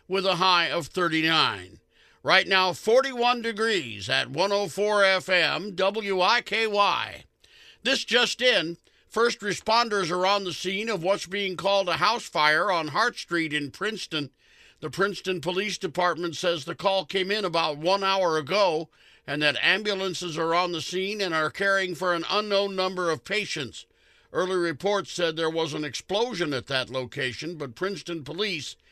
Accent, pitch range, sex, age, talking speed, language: American, 165-200 Hz, male, 50-69, 160 wpm, English